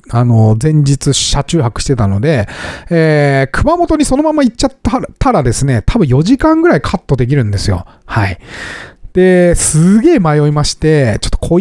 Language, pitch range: Japanese, 120-190 Hz